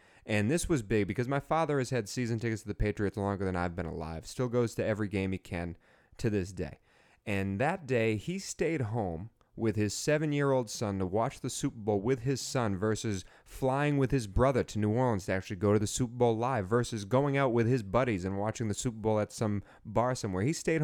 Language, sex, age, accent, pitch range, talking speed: English, male, 30-49, American, 100-125 Hz, 230 wpm